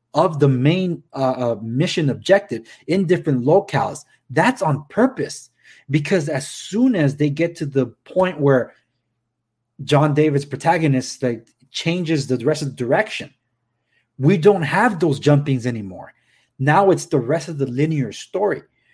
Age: 30-49